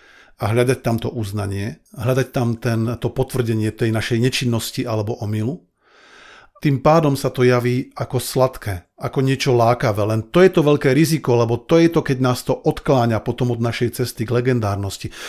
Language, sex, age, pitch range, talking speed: Slovak, male, 40-59, 115-135 Hz, 175 wpm